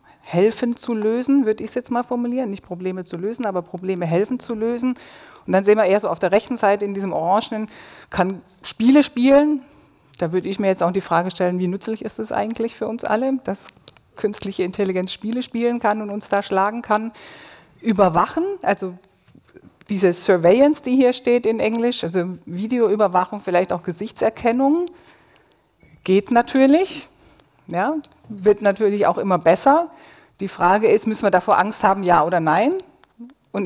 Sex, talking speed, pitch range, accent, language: female, 170 wpm, 180-240 Hz, German, German